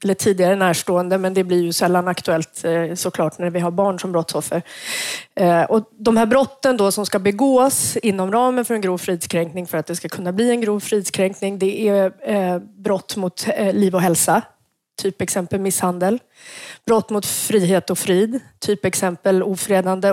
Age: 30-49